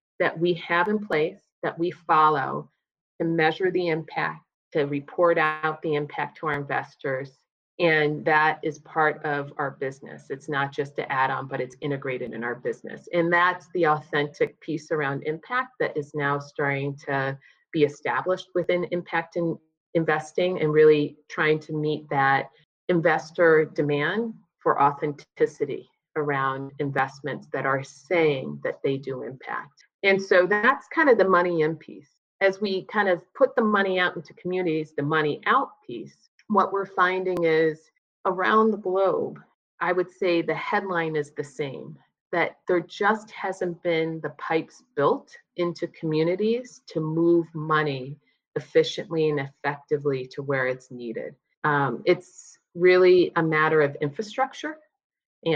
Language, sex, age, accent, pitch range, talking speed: English, female, 30-49, American, 150-180 Hz, 155 wpm